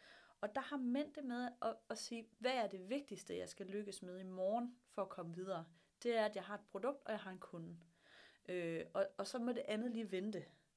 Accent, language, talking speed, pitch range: native, Danish, 245 wpm, 200-255 Hz